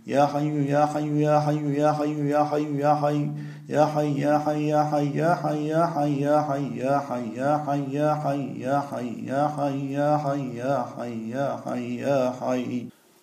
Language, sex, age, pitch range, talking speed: Turkish, male, 40-59, 140-150 Hz, 70 wpm